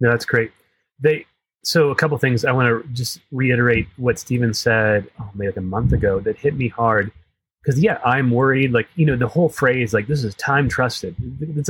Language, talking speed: English, 220 wpm